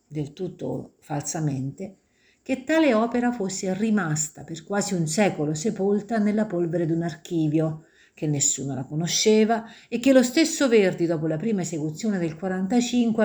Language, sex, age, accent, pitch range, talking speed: Italian, female, 50-69, native, 155-220 Hz, 150 wpm